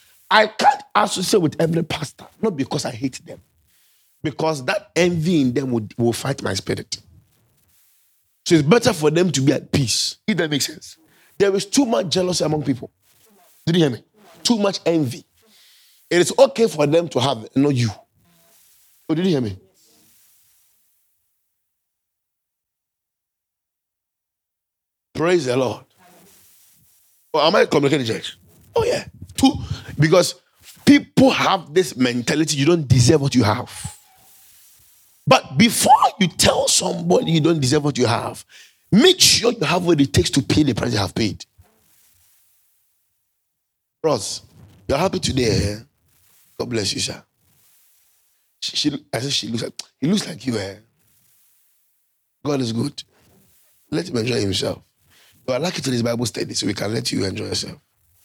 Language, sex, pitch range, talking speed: English, male, 105-175 Hz, 155 wpm